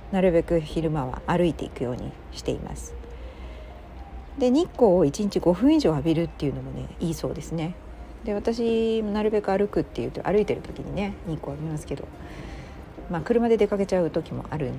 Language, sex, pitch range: Japanese, female, 150-220 Hz